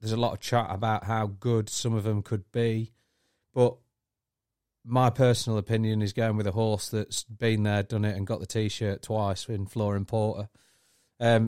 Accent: British